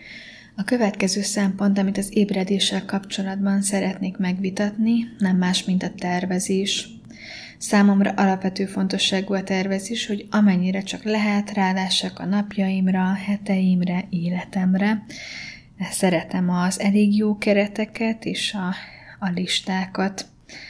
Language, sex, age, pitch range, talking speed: Hungarian, female, 20-39, 185-205 Hz, 105 wpm